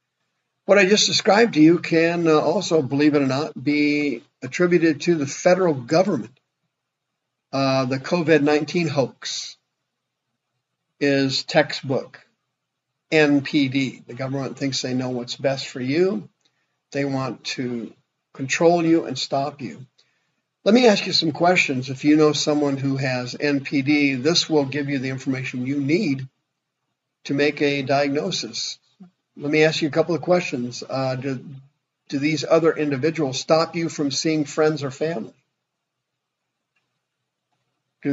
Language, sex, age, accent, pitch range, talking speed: English, male, 50-69, American, 135-160 Hz, 140 wpm